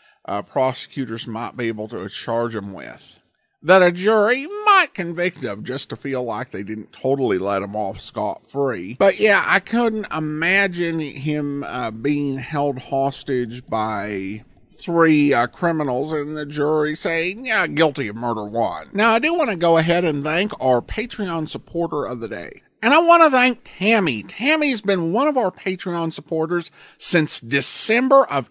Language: English